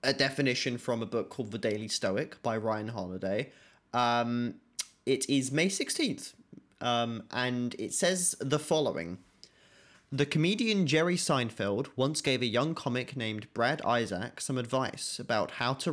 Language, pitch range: English, 115-140 Hz